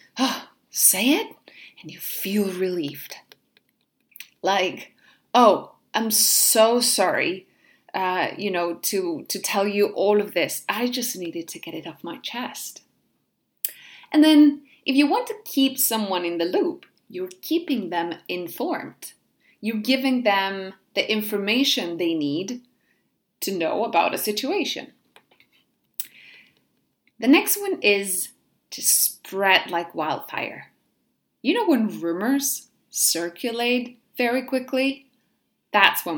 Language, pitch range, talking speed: English, 195-285 Hz, 125 wpm